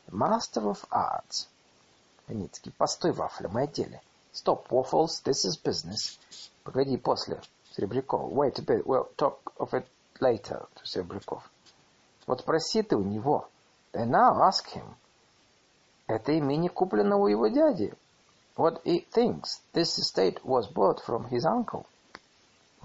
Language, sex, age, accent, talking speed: Russian, male, 50-69, native, 130 wpm